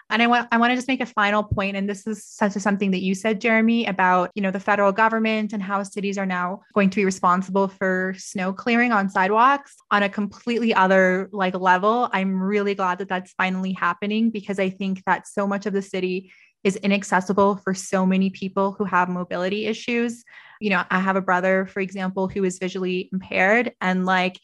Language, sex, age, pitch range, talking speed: English, female, 20-39, 190-210 Hz, 215 wpm